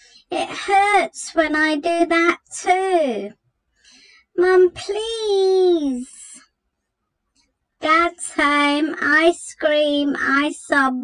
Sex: male